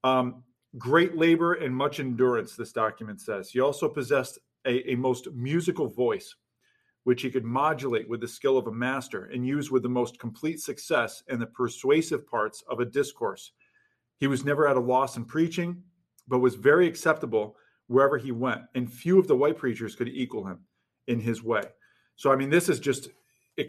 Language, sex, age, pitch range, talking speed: English, male, 40-59, 120-145 Hz, 190 wpm